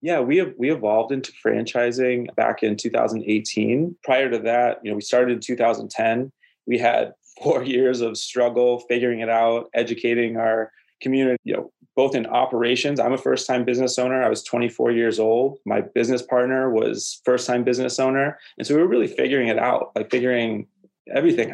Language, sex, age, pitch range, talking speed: English, male, 30-49, 115-130 Hz, 180 wpm